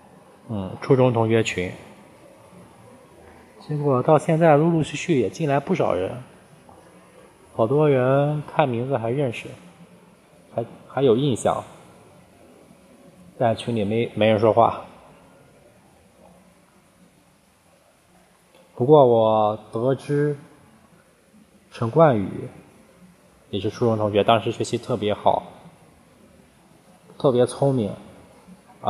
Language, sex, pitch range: Chinese, male, 105-135 Hz